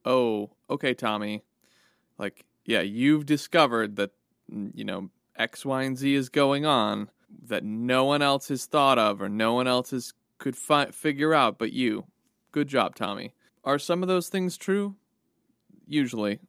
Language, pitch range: English, 110-135 Hz